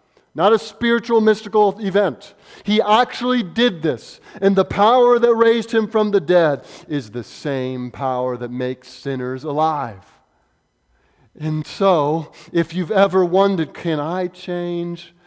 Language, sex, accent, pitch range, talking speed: English, male, American, 170-230 Hz, 140 wpm